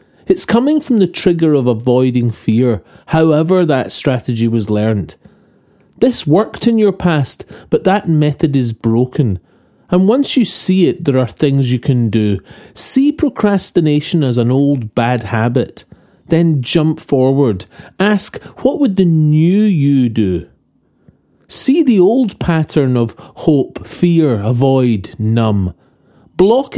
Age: 40-59